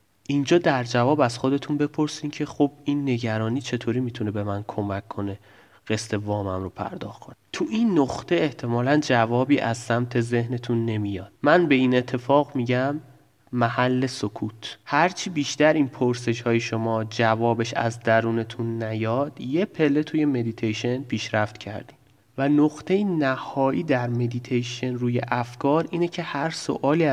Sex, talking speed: male, 140 wpm